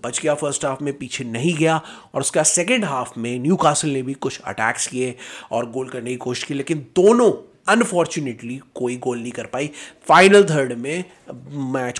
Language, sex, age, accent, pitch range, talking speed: Hindi, male, 30-49, native, 135-185 Hz, 190 wpm